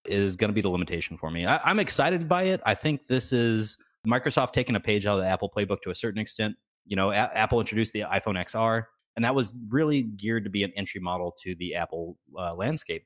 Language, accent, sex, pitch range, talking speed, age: English, American, male, 95-120 Hz, 235 wpm, 30-49